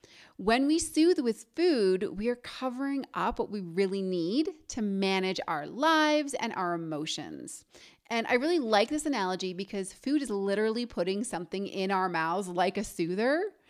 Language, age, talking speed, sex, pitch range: English, 30-49, 165 wpm, female, 180-245 Hz